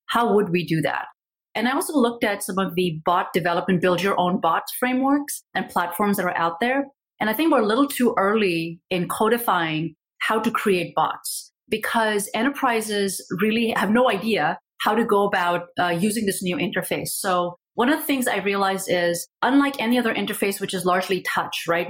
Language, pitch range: English, 175-230 Hz